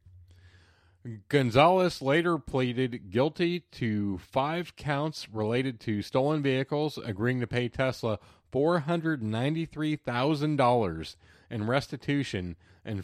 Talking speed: 85 wpm